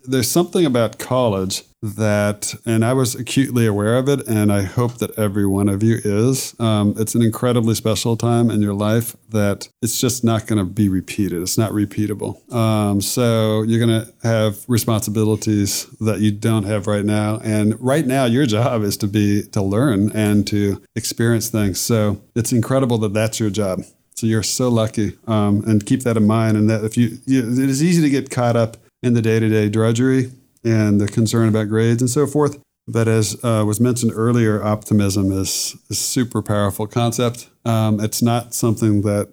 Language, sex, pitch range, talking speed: English, male, 105-120 Hz, 190 wpm